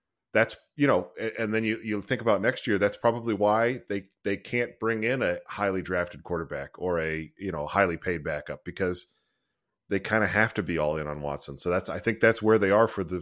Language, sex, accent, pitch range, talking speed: English, male, American, 90-115 Hz, 230 wpm